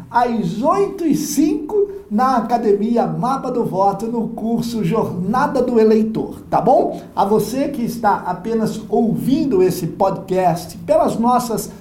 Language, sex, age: Portuguese, male, 60-79